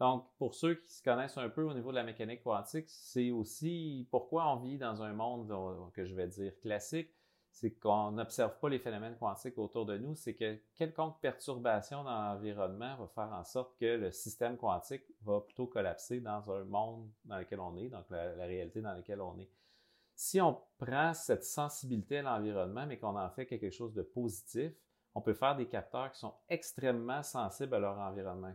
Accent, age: Canadian, 40-59